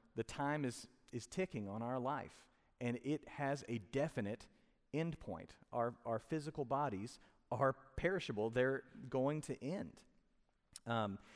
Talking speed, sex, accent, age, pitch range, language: 135 wpm, male, American, 40-59, 115-150 Hz, English